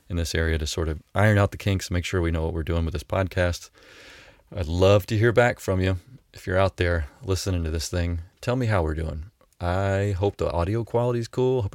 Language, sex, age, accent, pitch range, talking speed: English, male, 30-49, American, 80-95 Hz, 245 wpm